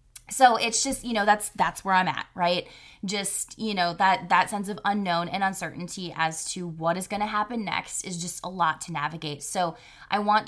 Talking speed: 220 wpm